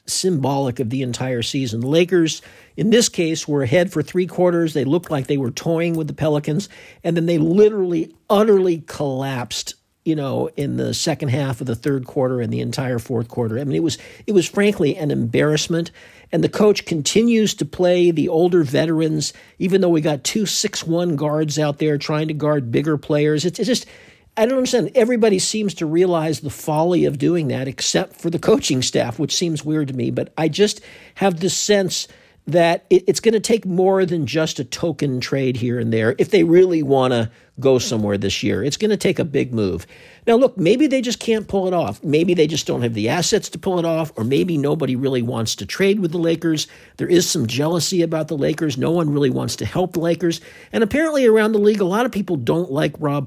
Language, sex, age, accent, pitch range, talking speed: English, male, 50-69, American, 140-180 Hz, 220 wpm